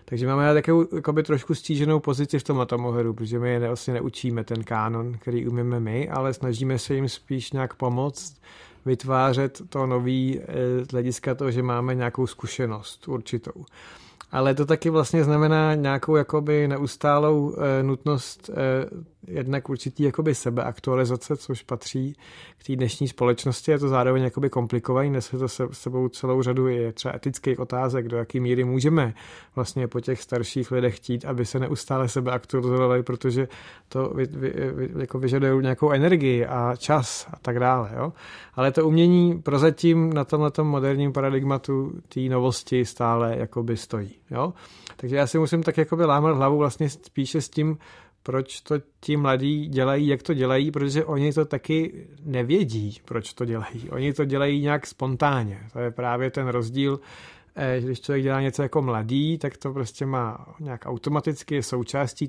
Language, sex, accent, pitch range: Czech, male, native, 125-145 Hz